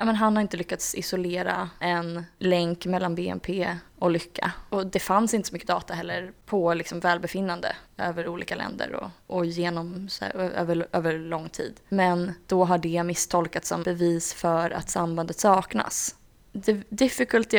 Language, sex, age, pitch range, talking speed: Swedish, female, 20-39, 175-205 Hz, 165 wpm